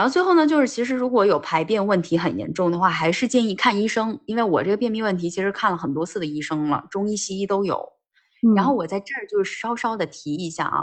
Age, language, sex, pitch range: 20-39, Chinese, female, 155-225 Hz